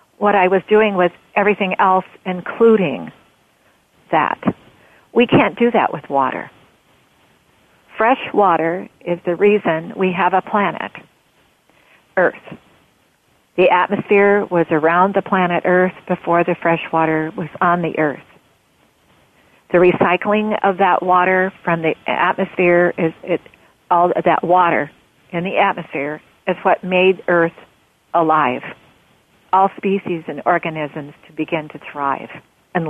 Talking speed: 125 wpm